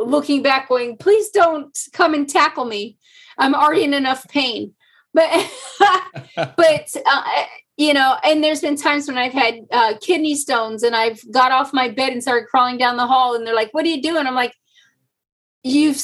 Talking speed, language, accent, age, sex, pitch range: 190 wpm, English, American, 30-49, female, 235-290 Hz